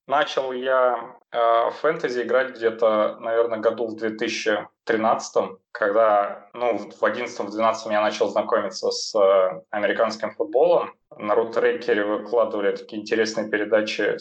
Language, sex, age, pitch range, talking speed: Russian, male, 20-39, 110-185 Hz, 115 wpm